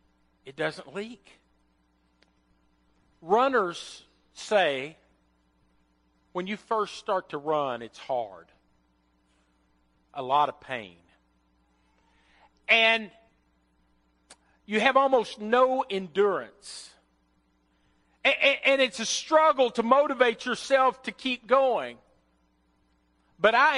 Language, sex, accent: English, male, American